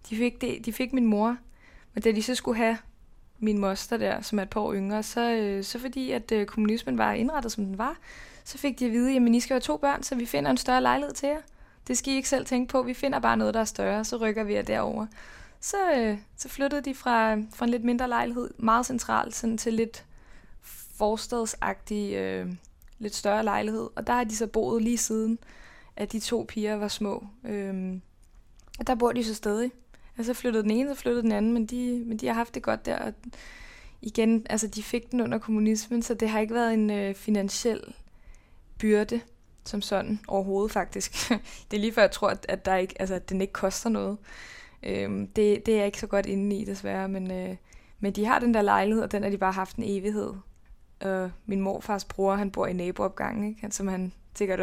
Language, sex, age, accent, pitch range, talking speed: Danish, female, 20-39, native, 200-240 Hz, 225 wpm